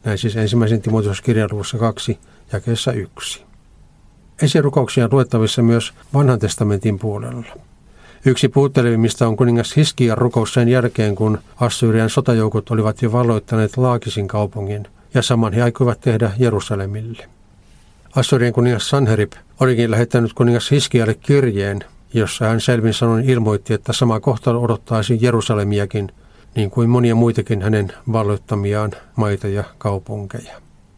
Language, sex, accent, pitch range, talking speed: Finnish, male, native, 105-120 Hz, 120 wpm